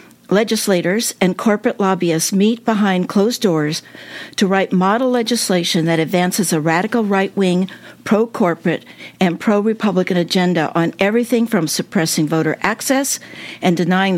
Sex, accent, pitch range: female, American, 180-235 Hz